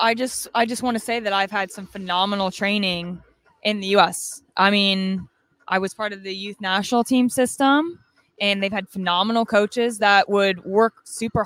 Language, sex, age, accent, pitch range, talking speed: English, female, 20-39, American, 195-230 Hz, 185 wpm